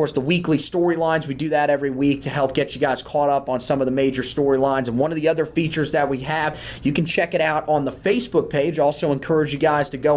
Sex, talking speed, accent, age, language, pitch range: male, 265 wpm, American, 30-49, English, 135-165 Hz